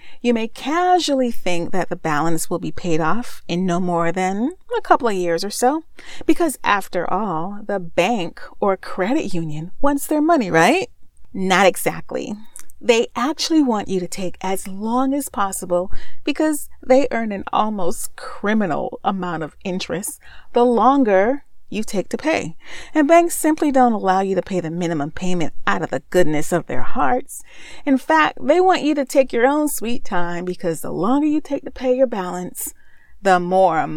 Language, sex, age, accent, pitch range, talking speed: English, female, 40-59, American, 175-270 Hz, 175 wpm